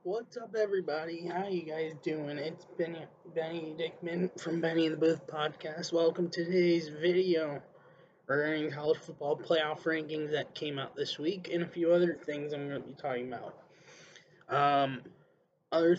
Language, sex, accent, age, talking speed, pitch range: English, male, American, 20-39, 165 wpm, 140-175 Hz